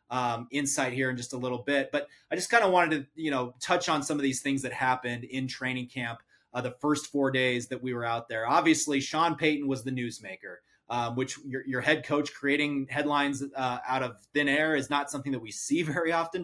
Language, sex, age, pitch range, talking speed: English, male, 30-49, 130-150 Hz, 235 wpm